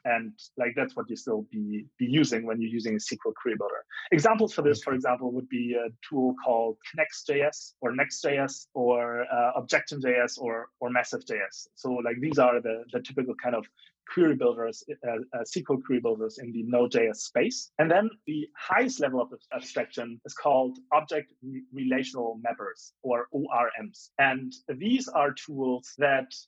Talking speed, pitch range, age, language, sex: 170 wpm, 125-170 Hz, 30-49, English, male